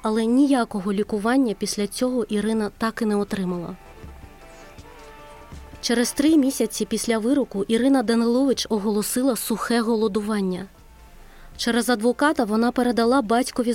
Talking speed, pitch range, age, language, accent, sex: 110 wpm, 210-250 Hz, 20-39, Ukrainian, native, female